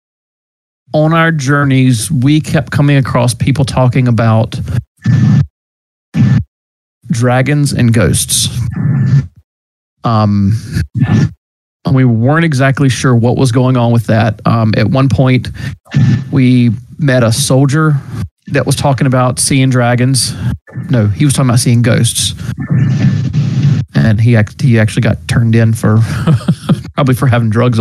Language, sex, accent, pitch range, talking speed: English, male, American, 115-135 Hz, 125 wpm